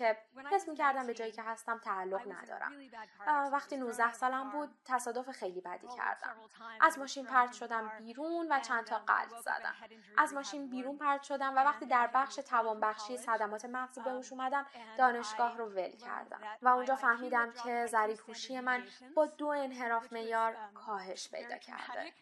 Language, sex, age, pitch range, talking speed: Persian, female, 10-29, 225-280 Hz, 160 wpm